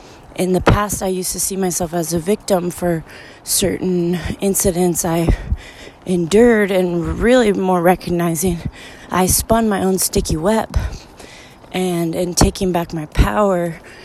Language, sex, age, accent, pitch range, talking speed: English, female, 20-39, American, 165-185 Hz, 135 wpm